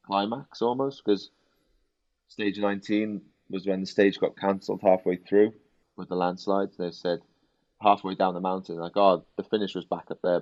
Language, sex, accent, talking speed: English, male, British, 175 wpm